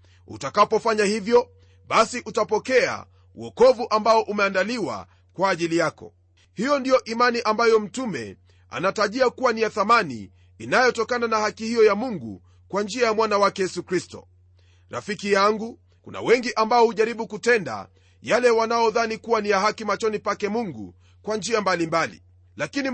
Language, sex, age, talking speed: Swahili, male, 40-59, 140 wpm